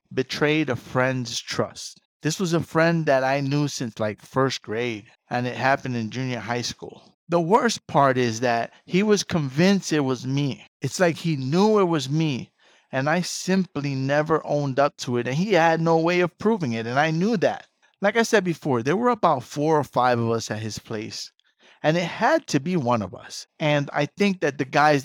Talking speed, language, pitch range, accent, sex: 215 wpm, English, 125-155 Hz, American, male